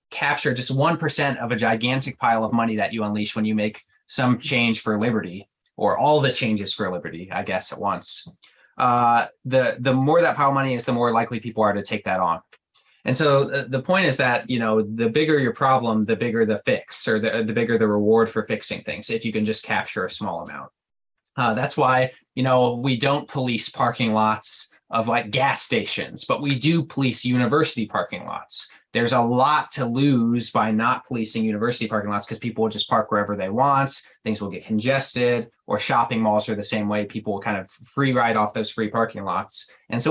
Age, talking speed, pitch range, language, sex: 20-39, 220 wpm, 110-135 Hz, English, male